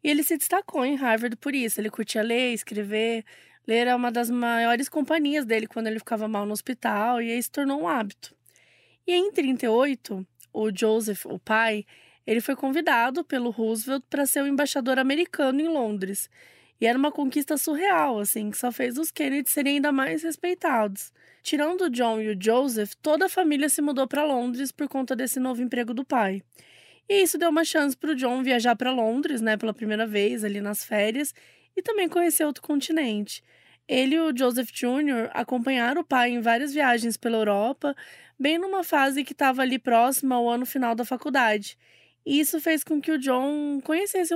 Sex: female